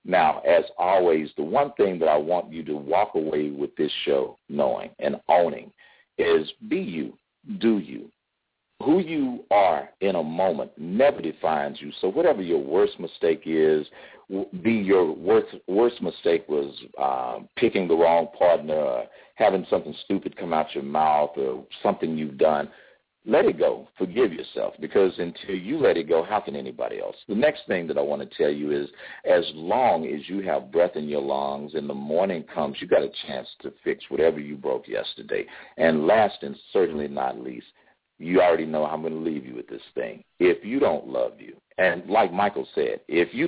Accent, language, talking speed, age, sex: American, English, 190 wpm, 50-69, male